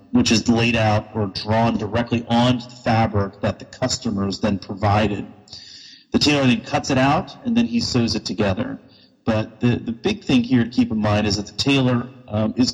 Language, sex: English, male